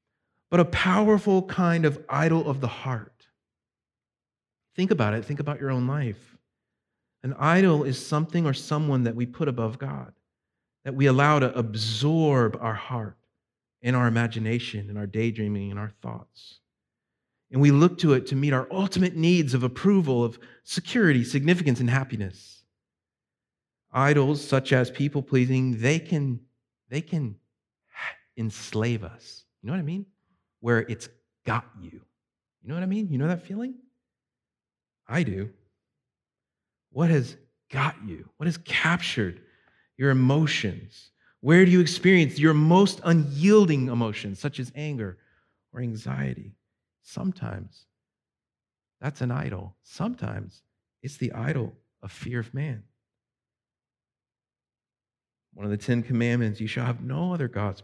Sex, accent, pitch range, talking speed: male, American, 115-155 Hz, 140 wpm